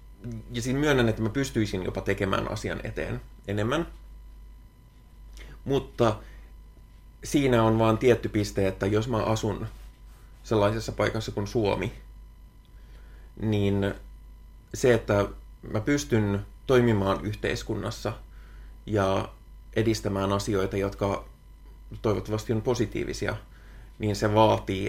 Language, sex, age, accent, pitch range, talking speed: Finnish, male, 30-49, native, 100-110 Hz, 100 wpm